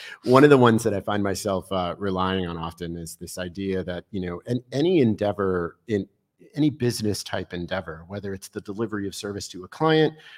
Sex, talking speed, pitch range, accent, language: male, 200 wpm, 95-120 Hz, American, English